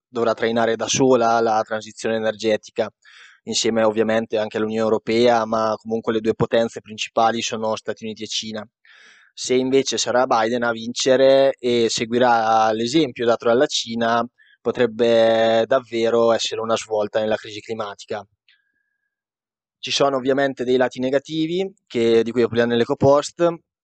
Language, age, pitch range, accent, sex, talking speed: Italian, 20-39, 110-120 Hz, native, male, 140 wpm